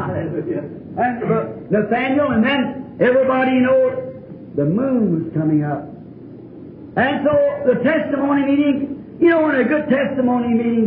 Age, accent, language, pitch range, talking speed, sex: 50-69, American, English, 220-285 Hz, 135 wpm, male